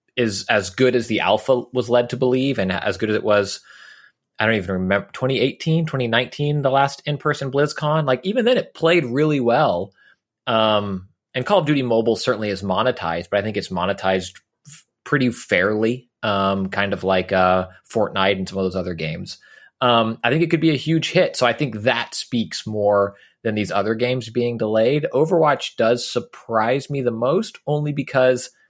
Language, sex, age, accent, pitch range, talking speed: English, male, 30-49, American, 100-145 Hz, 190 wpm